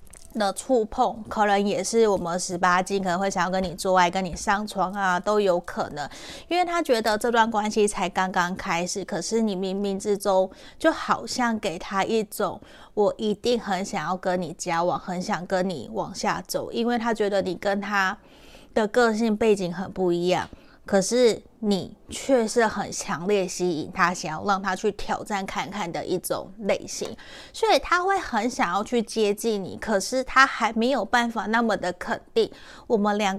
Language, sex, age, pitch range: Chinese, female, 30-49, 185-225 Hz